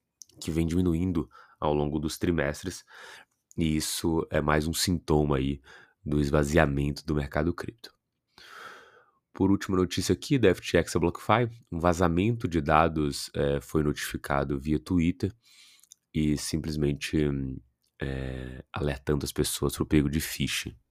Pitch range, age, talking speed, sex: 75-85 Hz, 20-39, 135 wpm, male